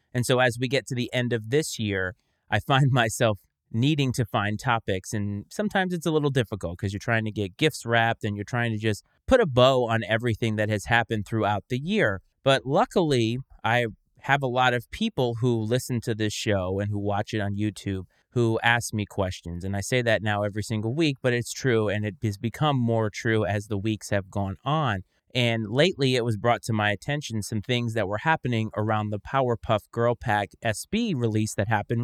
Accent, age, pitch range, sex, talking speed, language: American, 30-49, 105-130 Hz, male, 215 wpm, English